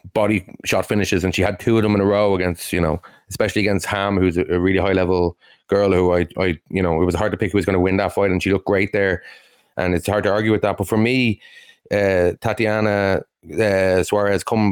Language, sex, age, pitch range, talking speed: English, male, 30-49, 95-105 Hz, 250 wpm